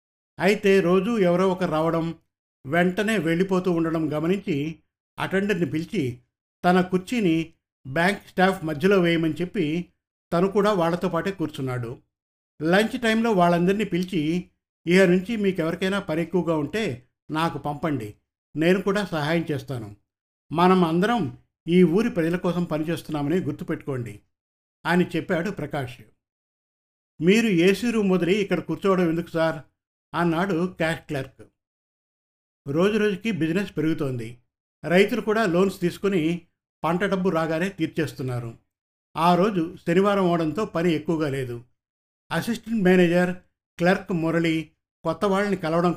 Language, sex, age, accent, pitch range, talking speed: Telugu, male, 60-79, native, 150-190 Hz, 115 wpm